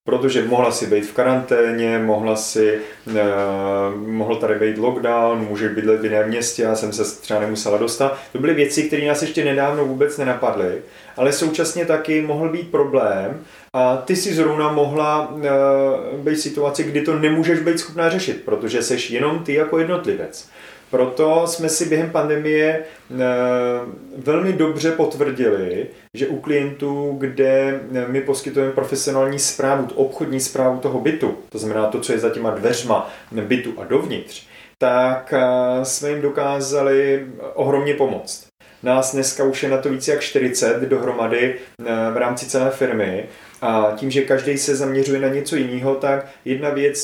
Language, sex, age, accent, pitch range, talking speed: Czech, male, 30-49, native, 125-145 Hz, 155 wpm